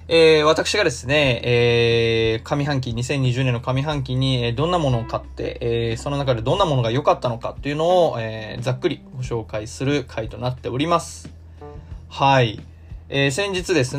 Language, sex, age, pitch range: Japanese, male, 20-39, 115-145 Hz